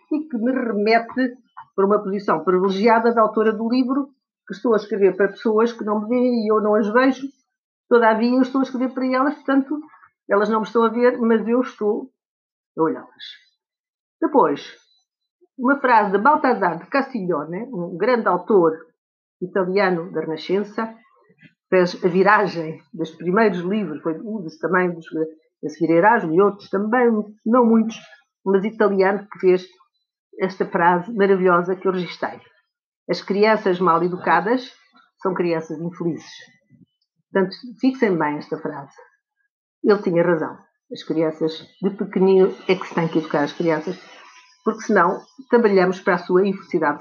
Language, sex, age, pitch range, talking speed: Portuguese, female, 50-69, 180-245 Hz, 155 wpm